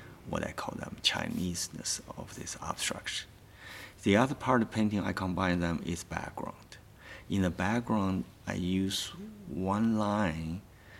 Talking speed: 140 wpm